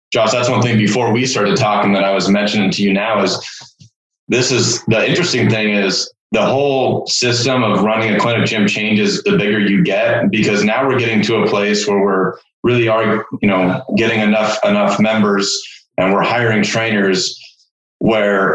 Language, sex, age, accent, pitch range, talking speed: English, male, 30-49, American, 105-125 Hz, 185 wpm